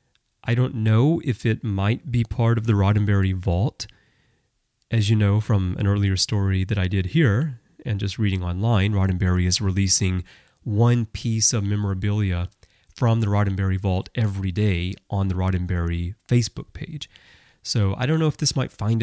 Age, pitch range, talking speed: 30-49, 100-125 Hz, 165 wpm